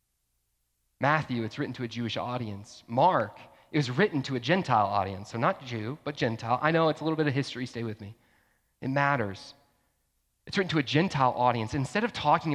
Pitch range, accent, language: 105-140 Hz, American, English